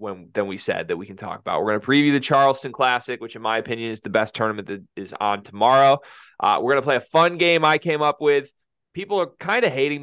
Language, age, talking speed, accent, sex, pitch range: English, 20-39, 270 wpm, American, male, 115-145 Hz